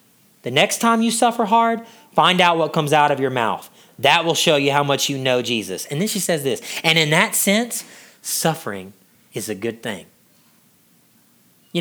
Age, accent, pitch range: 30-49, American, 155-230 Hz